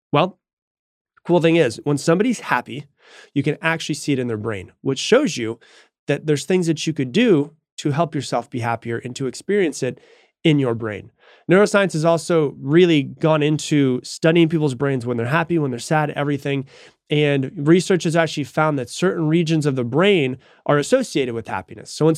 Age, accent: 30-49, American